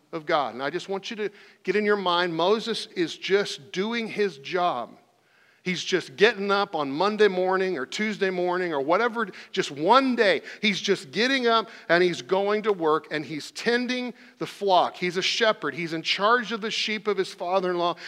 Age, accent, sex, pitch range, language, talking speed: 50-69, American, male, 155-210 Hz, English, 195 wpm